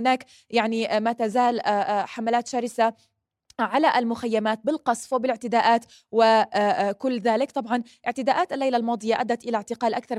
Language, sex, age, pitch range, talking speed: Arabic, female, 20-39, 215-255 Hz, 120 wpm